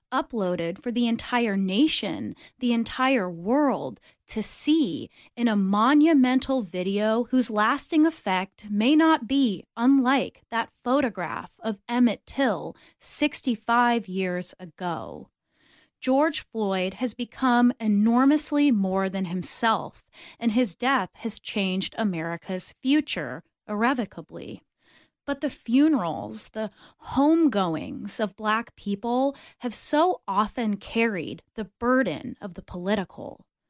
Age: 20-39